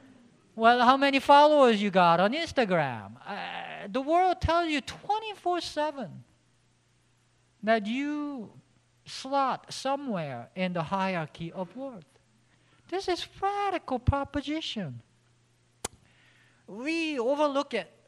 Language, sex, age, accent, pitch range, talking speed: English, male, 50-69, Japanese, 165-245 Hz, 100 wpm